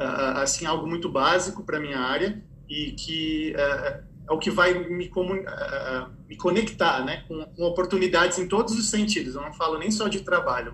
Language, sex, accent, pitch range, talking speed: Portuguese, male, Brazilian, 160-195 Hz, 190 wpm